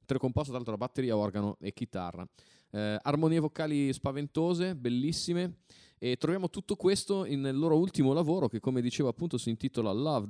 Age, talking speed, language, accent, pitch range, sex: 30-49, 165 wpm, Italian, native, 105-140 Hz, male